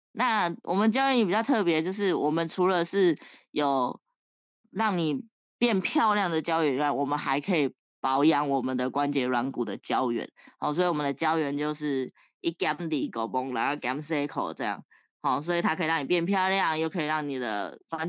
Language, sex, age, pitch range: Chinese, female, 20-39, 145-190 Hz